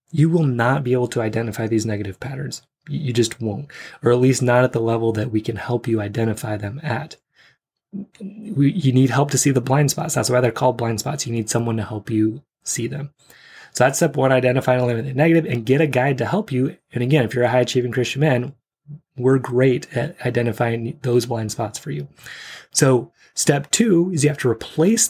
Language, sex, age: English, male, 20-39